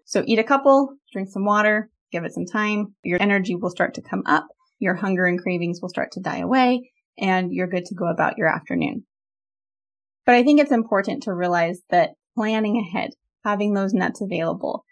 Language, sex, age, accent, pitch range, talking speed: English, female, 20-39, American, 180-235 Hz, 195 wpm